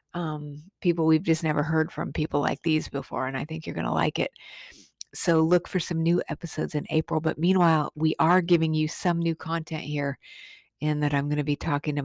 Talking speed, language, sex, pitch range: 225 wpm, English, female, 145-170 Hz